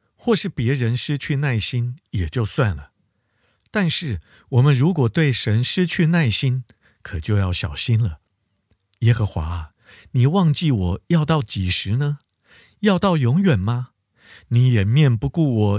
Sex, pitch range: male, 100-150 Hz